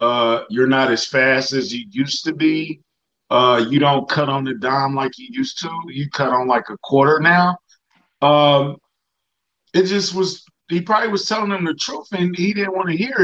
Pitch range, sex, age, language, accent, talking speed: 150-195 Hz, male, 50-69, English, American, 205 wpm